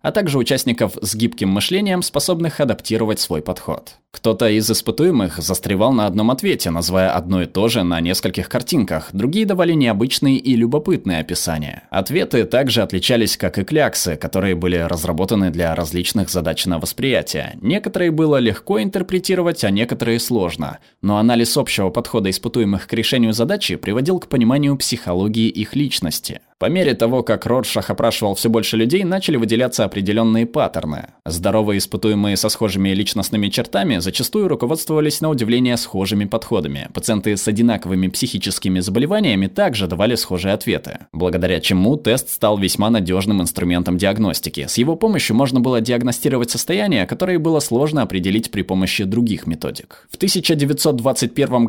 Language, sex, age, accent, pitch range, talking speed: Russian, male, 20-39, native, 95-140 Hz, 145 wpm